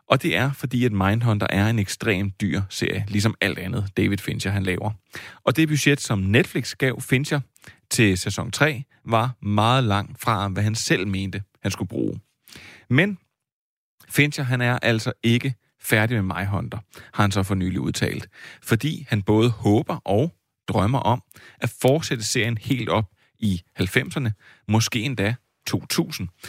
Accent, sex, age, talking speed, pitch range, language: native, male, 30-49, 160 wpm, 100-130 Hz, Danish